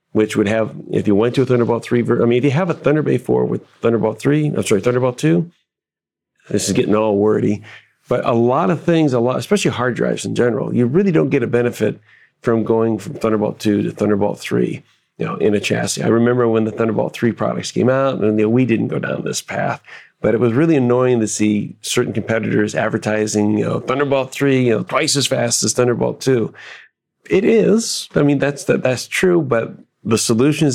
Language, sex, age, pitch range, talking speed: English, male, 40-59, 110-140 Hz, 225 wpm